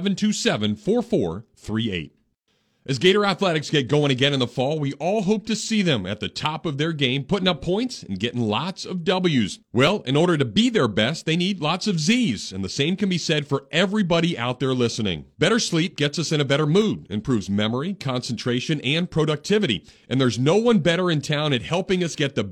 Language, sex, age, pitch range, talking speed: English, male, 40-59, 130-190 Hz, 205 wpm